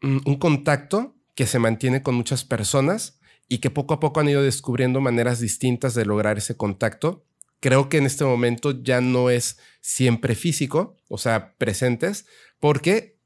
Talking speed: 165 wpm